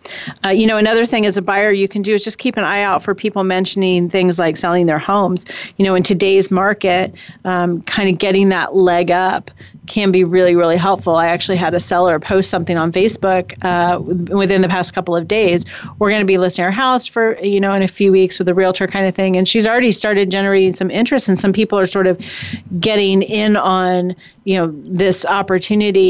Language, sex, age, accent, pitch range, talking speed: English, female, 30-49, American, 180-210 Hz, 225 wpm